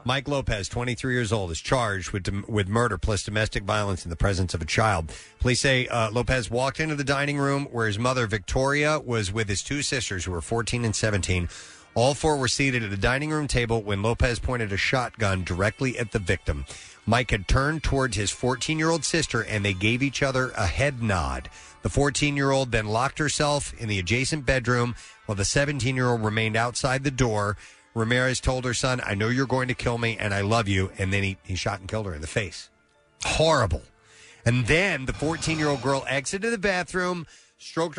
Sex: male